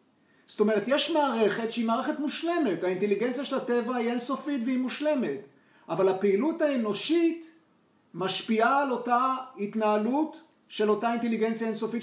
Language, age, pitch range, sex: Hebrew, 40-59, 190-250 Hz, male